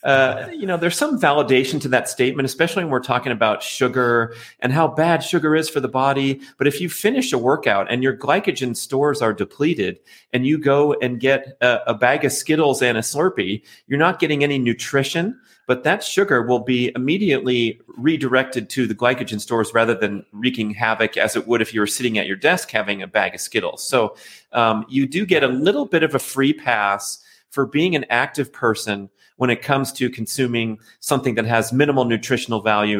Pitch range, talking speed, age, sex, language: 115-145 Hz, 200 wpm, 30-49, male, English